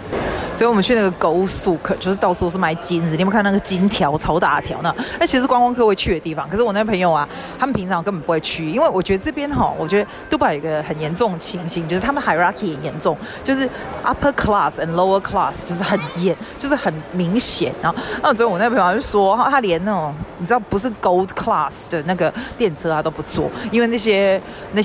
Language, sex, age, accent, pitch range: Chinese, female, 30-49, native, 170-215 Hz